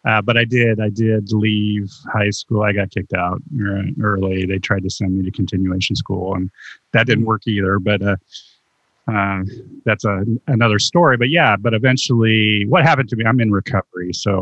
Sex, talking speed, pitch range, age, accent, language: male, 190 wpm, 95-115 Hz, 30-49, American, English